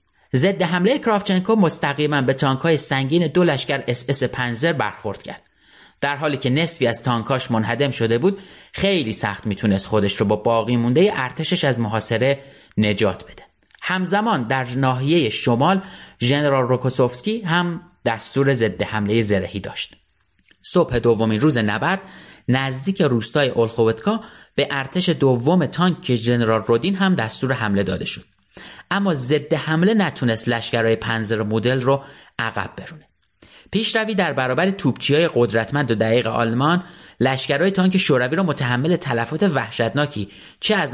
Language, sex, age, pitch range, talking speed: Persian, male, 30-49, 115-175 Hz, 135 wpm